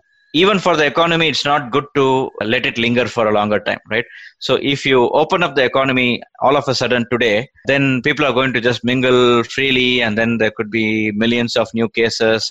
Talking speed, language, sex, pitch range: 215 wpm, English, male, 110-135 Hz